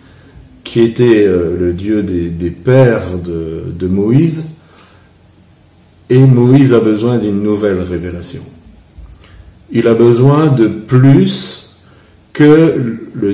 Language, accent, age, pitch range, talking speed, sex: French, French, 50-69, 95-130 Hz, 110 wpm, male